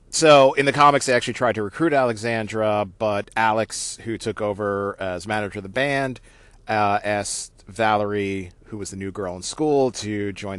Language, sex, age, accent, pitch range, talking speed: English, male, 40-59, American, 100-125 Hz, 180 wpm